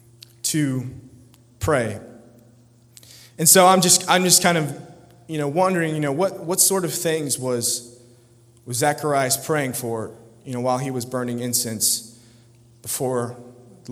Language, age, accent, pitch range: English, 20-39, American, 120-160 Hz